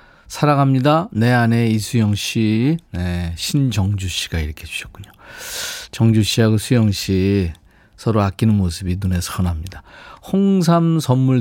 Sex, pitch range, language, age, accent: male, 100-145 Hz, Korean, 40-59, native